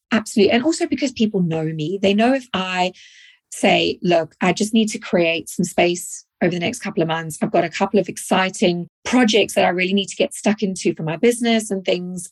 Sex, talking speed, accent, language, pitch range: female, 225 wpm, British, English, 165-200 Hz